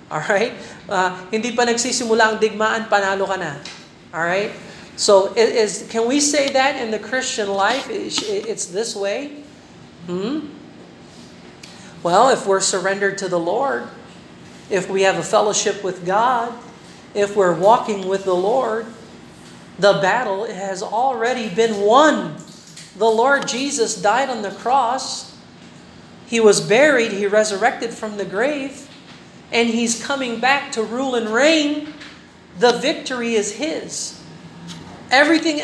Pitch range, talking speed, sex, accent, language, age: 180-230 Hz, 130 wpm, male, American, Filipino, 40-59